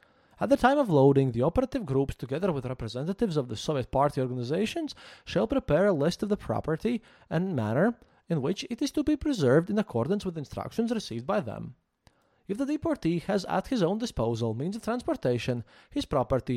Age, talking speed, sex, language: 20-39, 190 wpm, male, English